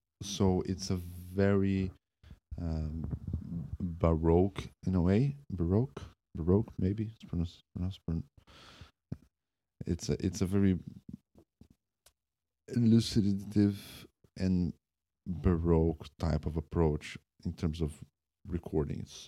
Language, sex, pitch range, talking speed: English, male, 80-95 Hz, 90 wpm